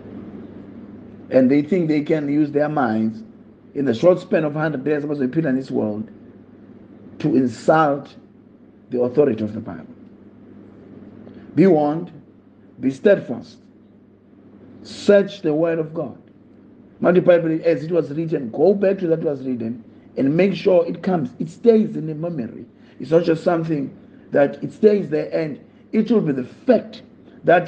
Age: 50-69